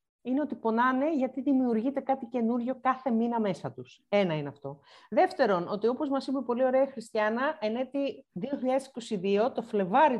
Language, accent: Greek, native